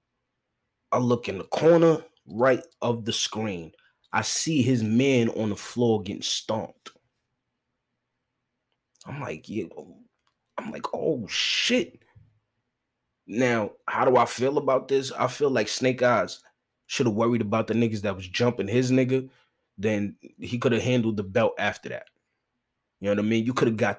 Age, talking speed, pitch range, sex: 20-39, 165 wpm, 110-125 Hz, male